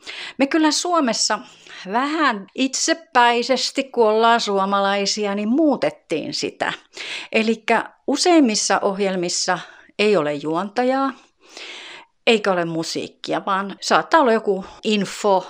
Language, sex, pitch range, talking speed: Finnish, female, 175-255 Hz, 95 wpm